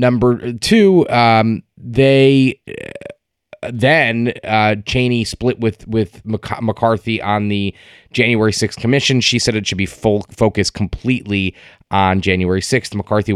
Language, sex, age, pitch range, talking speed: English, male, 20-39, 95-120 Hz, 140 wpm